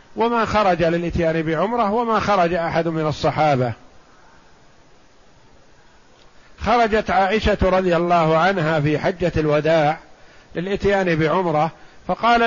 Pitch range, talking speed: 155-205 Hz, 95 wpm